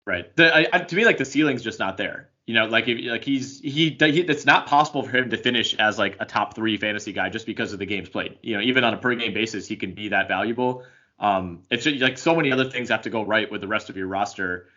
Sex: male